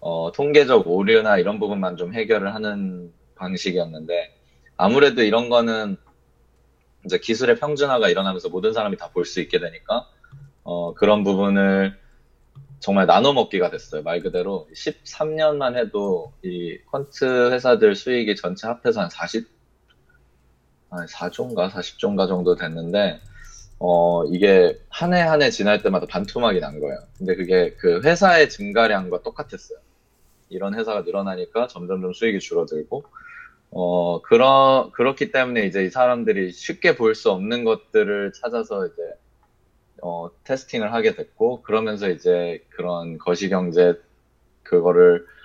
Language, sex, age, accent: Korean, male, 20-39, native